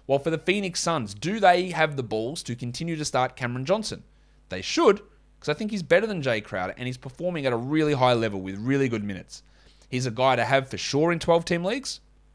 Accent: Australian